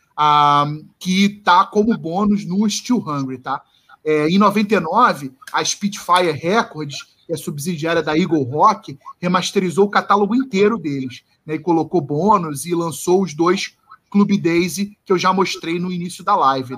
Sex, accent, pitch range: male, Brazilian, 155-195 Hz